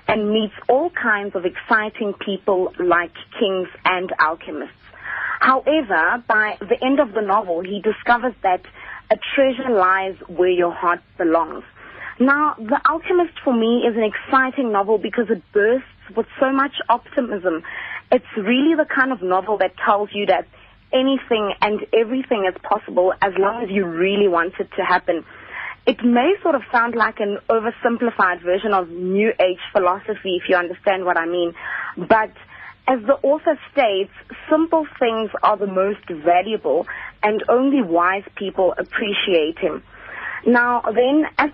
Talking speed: 155 wpm